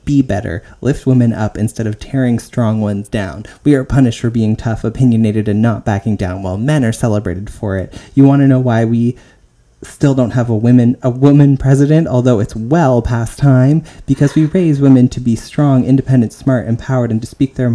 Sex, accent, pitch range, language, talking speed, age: male, American, 115-130 Hz, English, 205 wpm, 30-49